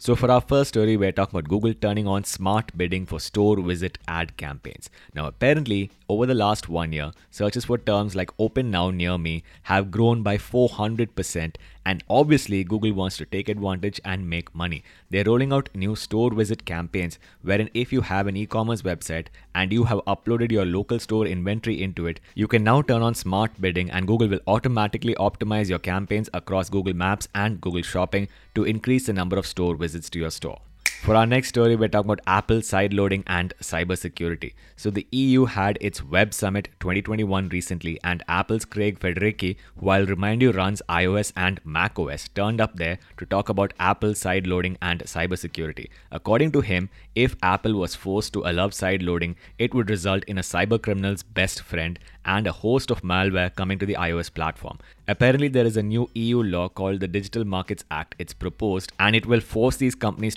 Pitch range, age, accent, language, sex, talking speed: 90-110 Hz, 20-39, Indian, English, male, 195 wpm